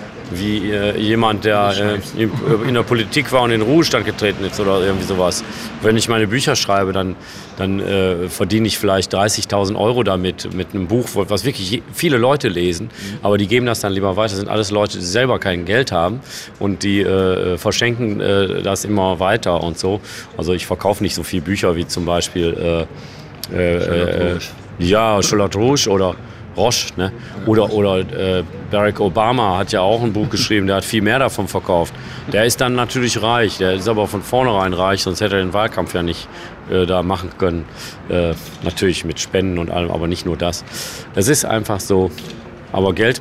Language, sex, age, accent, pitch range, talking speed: German, male, 40-59, German, 95-110 Hz, 195 wpm